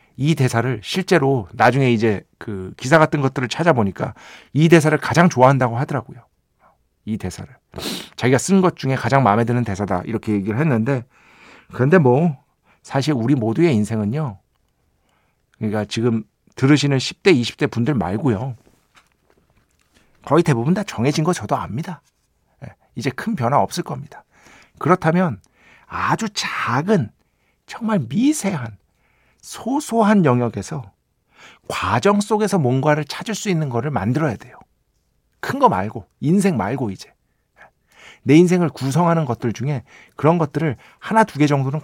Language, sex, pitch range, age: Korean, male, 115-170 Hz, 50-69